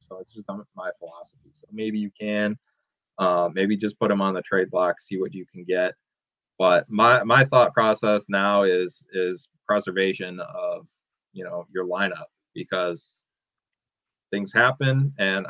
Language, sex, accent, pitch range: English, male, American, 95-115 Hz